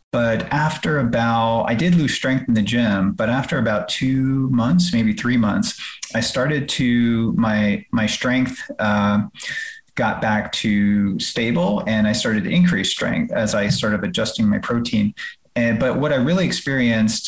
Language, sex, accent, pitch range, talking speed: English, male, American, 105-130 Hz, 165 wpm